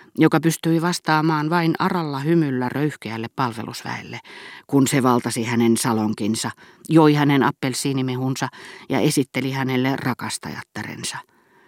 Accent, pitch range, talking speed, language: native, 120-160 Hz, 105 wpm, Finnish